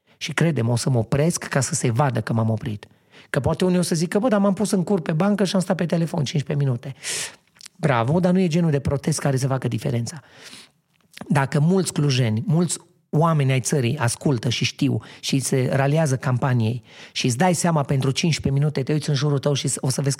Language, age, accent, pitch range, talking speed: Romanian, 30-49, native, 130-170 Hz, 225 wpm